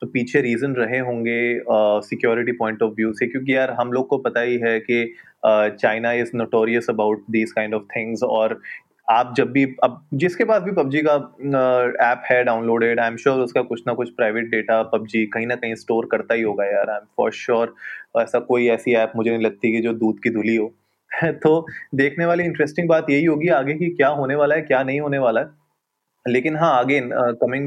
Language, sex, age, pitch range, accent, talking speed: Hindi, male, 20-39, 115-140 Hz, native, 215 wpm